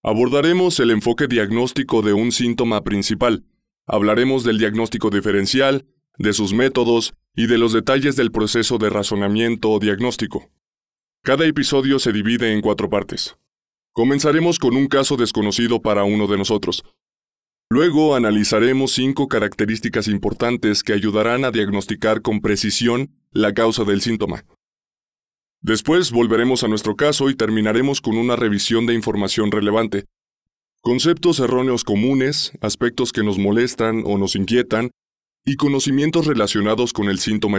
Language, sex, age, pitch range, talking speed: Spanish, male, 20-39, 105-125 Hz, 135 wpm